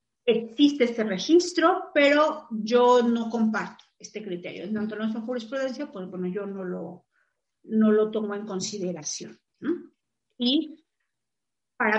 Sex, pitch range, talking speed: female, 210-315 Hz, 135 wpm